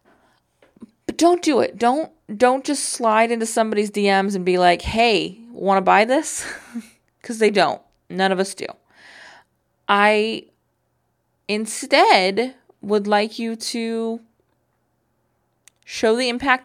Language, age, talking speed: English, 20-39, 125 wpm